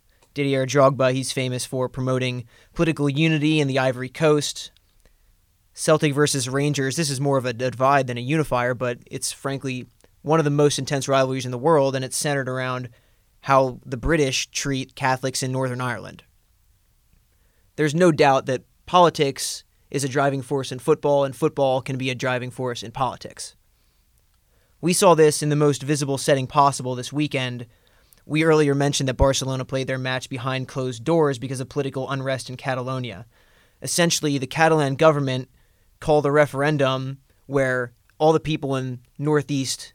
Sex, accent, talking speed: male, American, 165 wpm